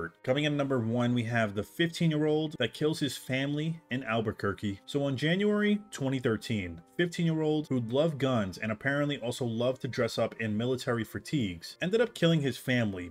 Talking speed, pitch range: 175 wpm, 110-150 Hz